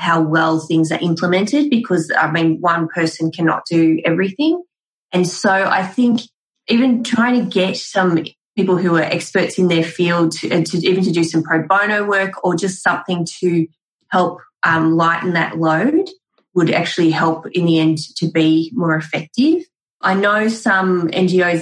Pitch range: 160-185 Hz